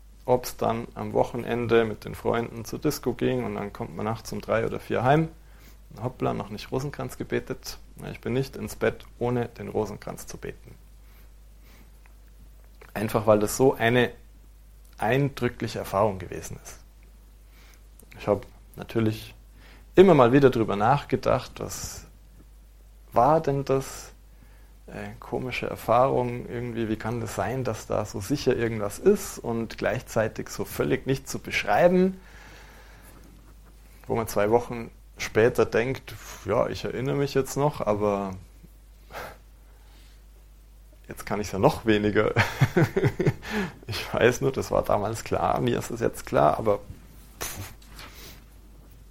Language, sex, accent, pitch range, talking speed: German, male, German, 105-130 Hz, 135 wpm